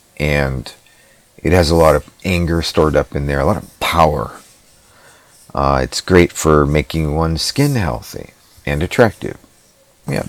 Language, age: English, 40-59